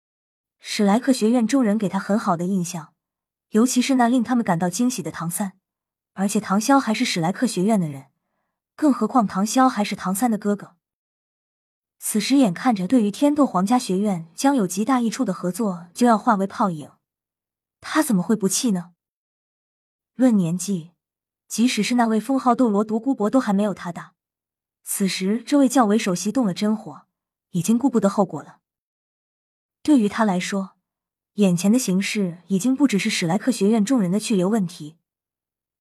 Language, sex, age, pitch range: Chinese, female, 20-39, 180-235 Hz